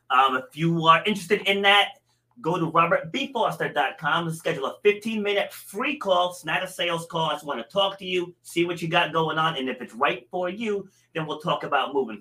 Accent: American